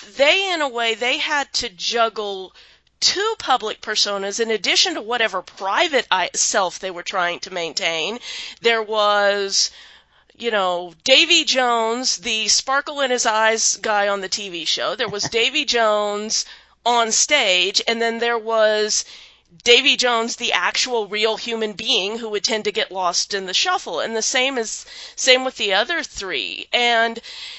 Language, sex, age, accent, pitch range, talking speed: English, female, 40-59, American, 215-275 Hz, 160 wpm